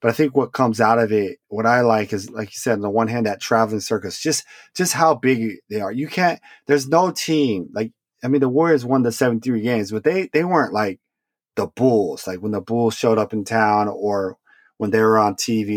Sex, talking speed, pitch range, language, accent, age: male, 245 wpm, 110-135 Hz, English, American, 30-49